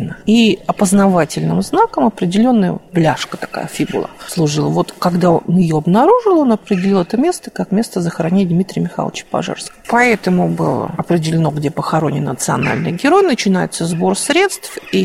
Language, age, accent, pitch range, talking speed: Russian, 50-69, native, 185-275 Hz, 135 wpm